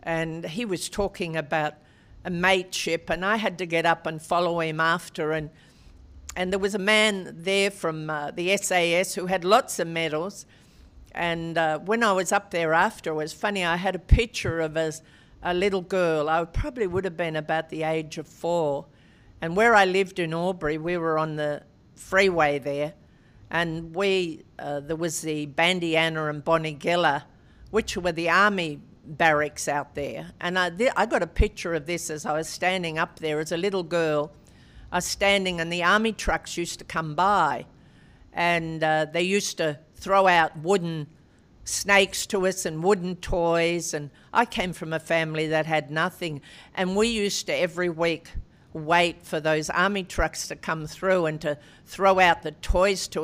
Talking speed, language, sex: 185 wpm, English, female